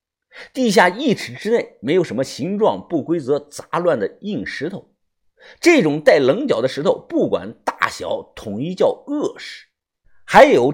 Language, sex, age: Chinese, male, 50-69